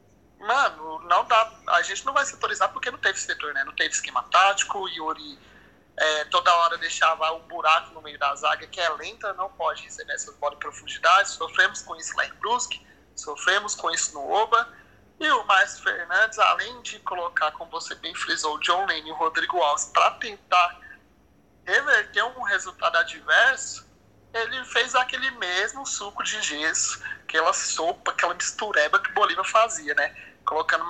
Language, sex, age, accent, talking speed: Portuguese, male, 30-49, Brazilian, 180 wpm